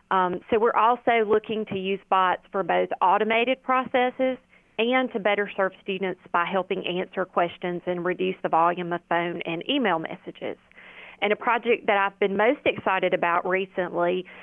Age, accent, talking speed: 30-49, American, 165 wpm